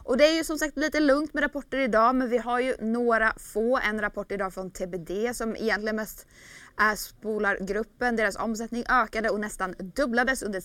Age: 20-39